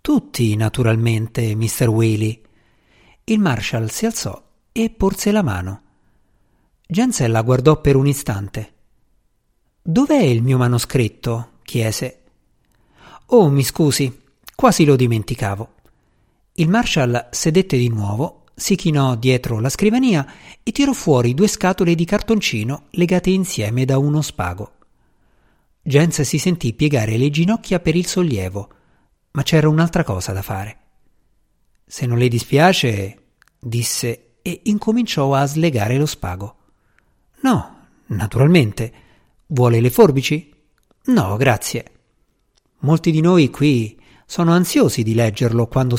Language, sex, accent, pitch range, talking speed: Italian, male, native, 115-165 Hz, 120 wpm